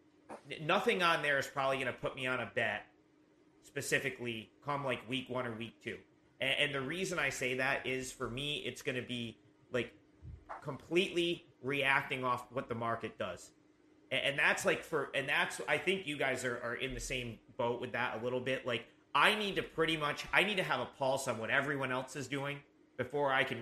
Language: English